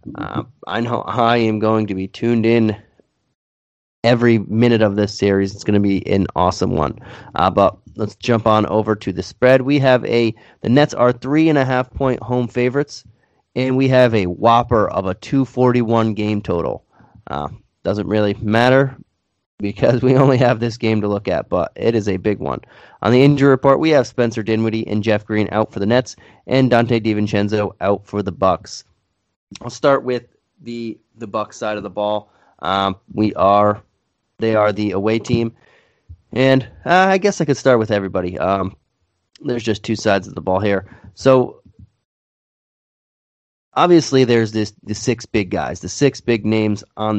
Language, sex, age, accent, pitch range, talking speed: English, male, 30-49, American, 100-125 Hz, 185 wpm